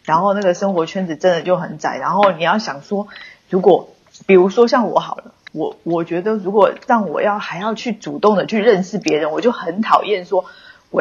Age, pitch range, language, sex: 20-39, 180-230 Hz, Chinese, female